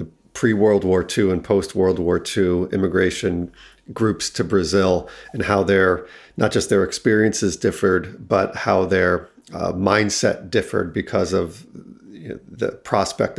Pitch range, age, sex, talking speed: 95-115 Hz, 40-59, male, 150 wpm